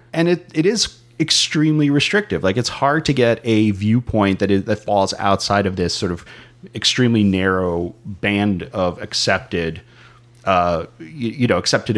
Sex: male